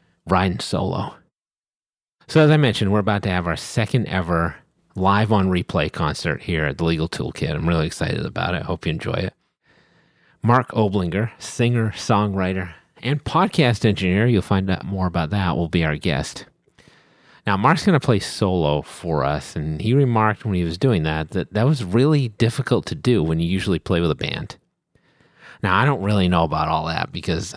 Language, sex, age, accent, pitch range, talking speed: English, male, 40-59, American, 85-115 Hz, 190 wpm